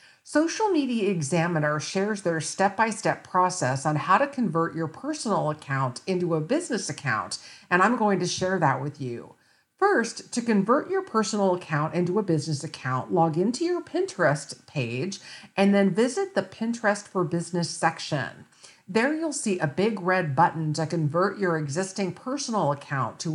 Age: 50-69